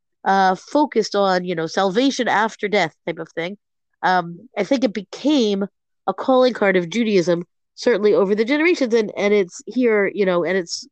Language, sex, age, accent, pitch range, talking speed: English, female, 30-49, American, 185-235 Hz, 180 wpm